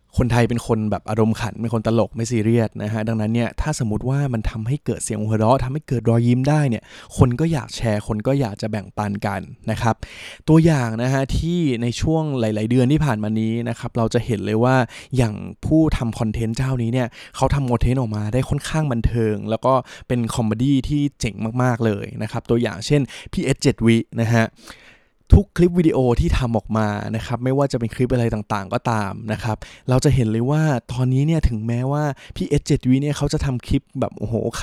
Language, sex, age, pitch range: Thai, male, 20-39, 110-135 Hz